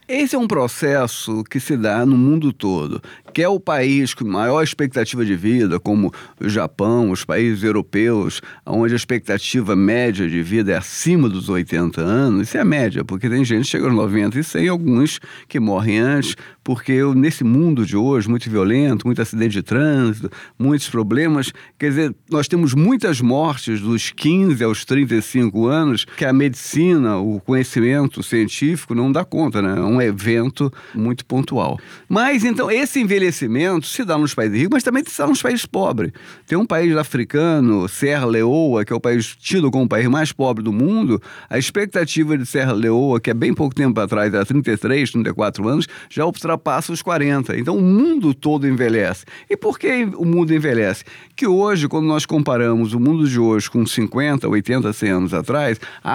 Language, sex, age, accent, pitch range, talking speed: Portuguese, male, 40-59, Brazilian, 115-155 Hz, 185 wpm